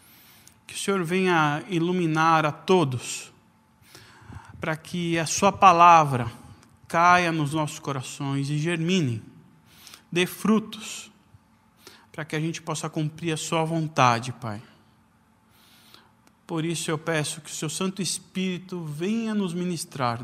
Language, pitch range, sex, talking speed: Portuguese, 130-180 Hz, male, 125 wpm